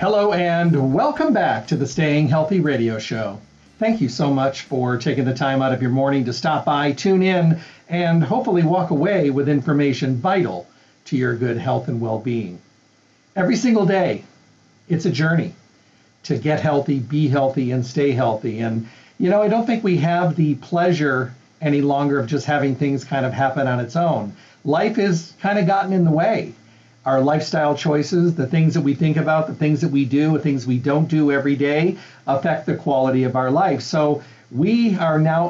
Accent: American